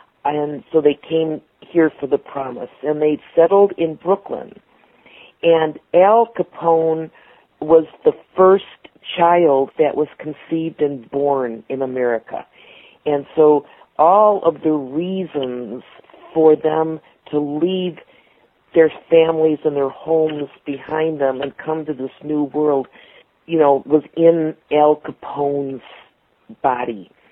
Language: English